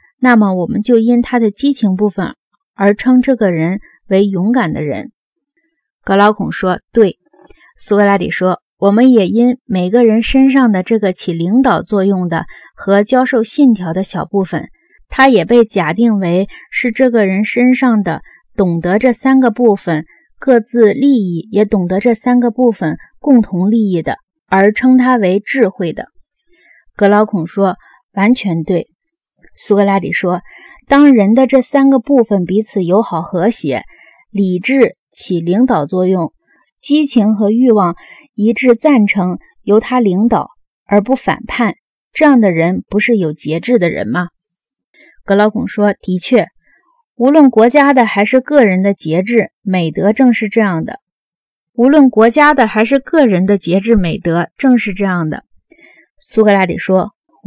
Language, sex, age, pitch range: Chinese, female, 20-39, 190-255 Hz